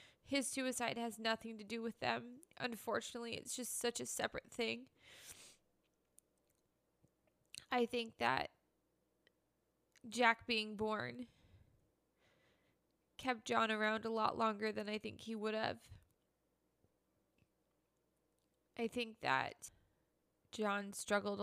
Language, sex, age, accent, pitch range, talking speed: English, female, 20-39, American, 190-220 Hz, 105 wpm